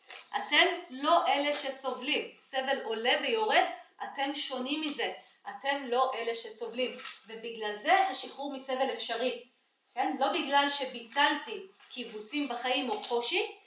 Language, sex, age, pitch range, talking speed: Hebrew, female, 40-59, 240-315 Hz, 120 wpm